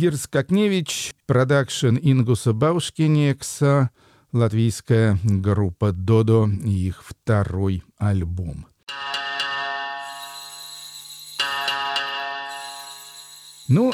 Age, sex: 50-69, male